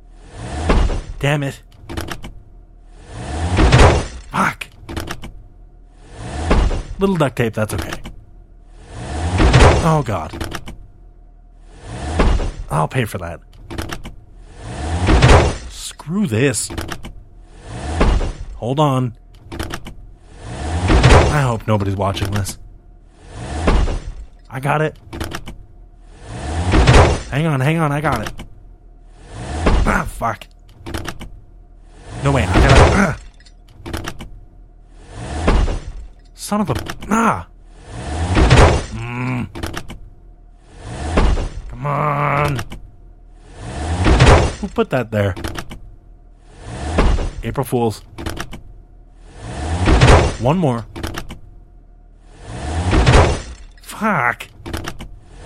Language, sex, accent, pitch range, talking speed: English, male, American, 80-115 Hz, 60 wpm